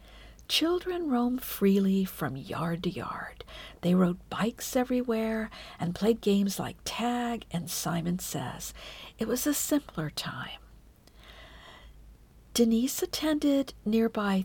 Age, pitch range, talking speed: 50-69, 175-235 Hz, 110 wpm